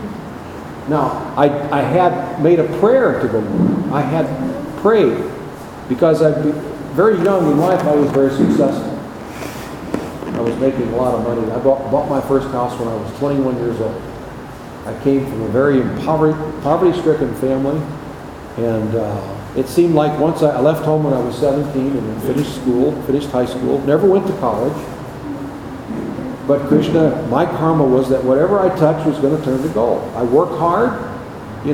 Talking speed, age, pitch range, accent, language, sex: 175 wpm, 50-69, 125-155 Hz, American, English, male